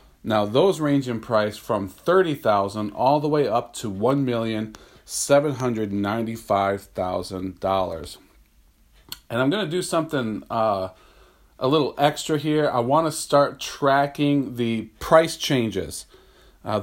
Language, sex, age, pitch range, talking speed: English, male, 40-59, 115-150 Hz, 120 wpm